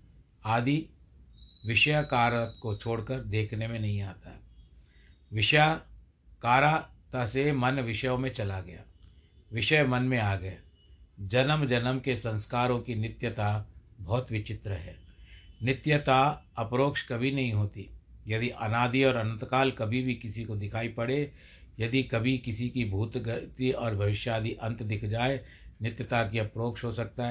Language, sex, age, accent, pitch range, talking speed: Hindi, male, 60-79, native, 100-130 Hz, 130 wpm